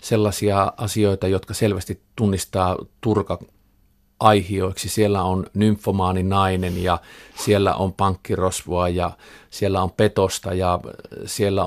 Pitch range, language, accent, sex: 95-110 Hz, Finnish, native, male